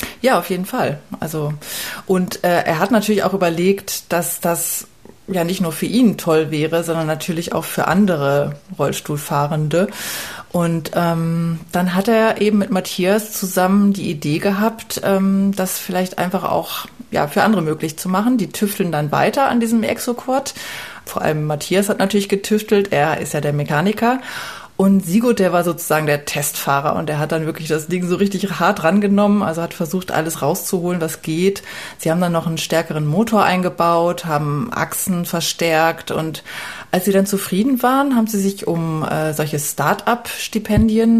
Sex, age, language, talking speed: female, 30-49, German, 170 wpm